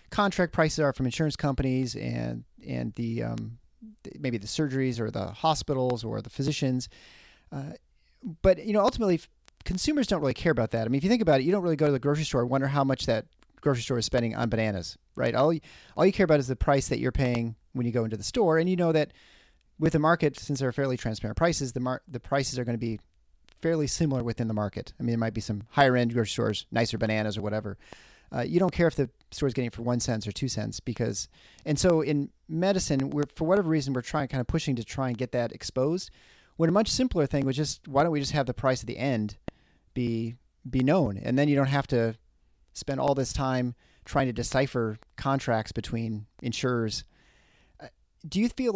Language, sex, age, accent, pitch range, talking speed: English, male, 30-49, American, 115-150 Hz, 235 wpm